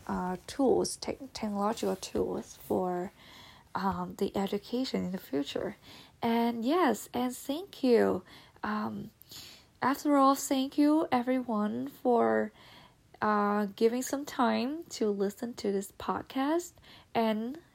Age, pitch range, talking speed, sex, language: 10-29, 195-255 Hz, 115 wpm, female, English